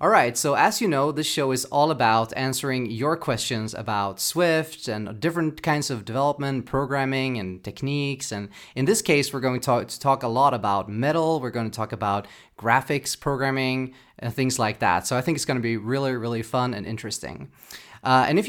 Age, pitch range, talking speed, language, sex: 30-49, 115-160 Hz, 210 wpm, English, male